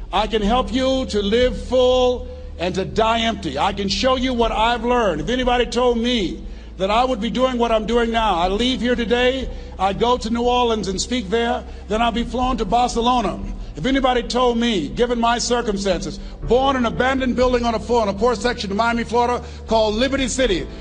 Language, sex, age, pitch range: English, male, 50-69, 200-250 Hz